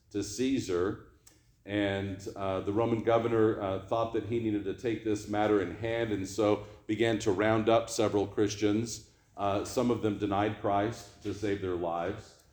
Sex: male